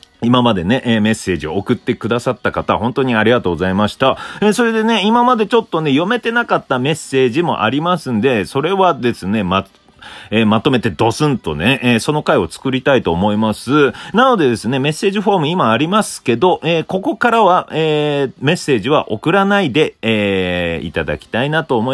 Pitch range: 115-190 Hz